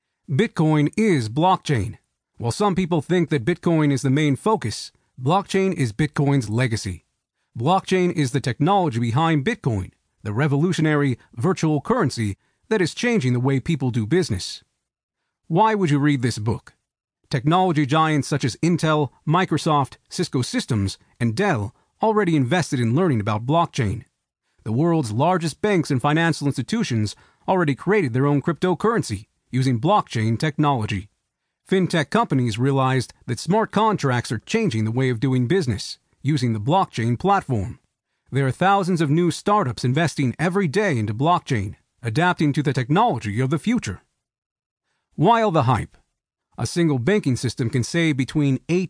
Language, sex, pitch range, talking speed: English, male, 125-175 Hz, 145 wpm